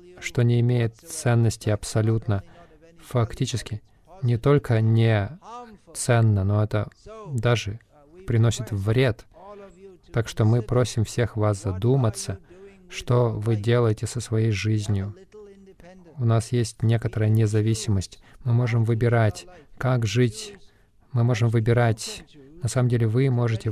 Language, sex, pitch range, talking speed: Russian, male, 110-150 Hz, 115 wpm